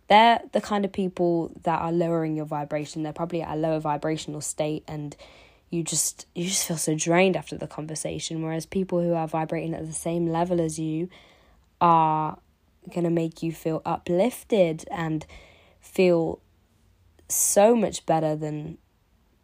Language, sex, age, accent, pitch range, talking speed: English, female, 20-39, British, 155-175 Hz, 155 wpm